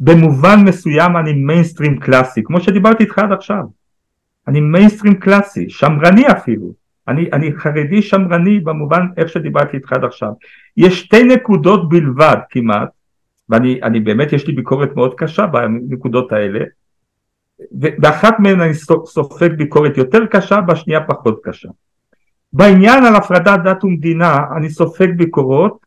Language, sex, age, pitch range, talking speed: Hebrew, male, 50-69, 125-195 Hz, 130 wpm